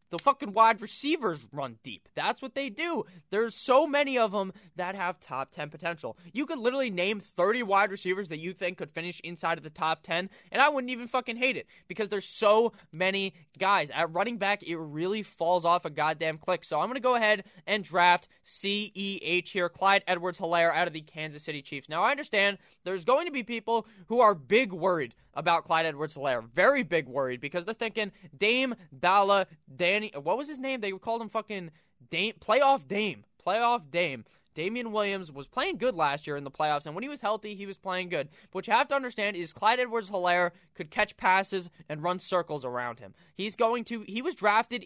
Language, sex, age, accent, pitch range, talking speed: English, male, 20-39, American, 165-220 Hz, 210 wpm